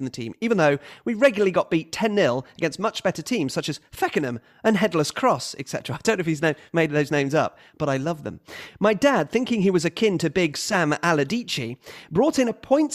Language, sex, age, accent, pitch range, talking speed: English, male, 40-59, British, 150-225 Hz, 225 wpm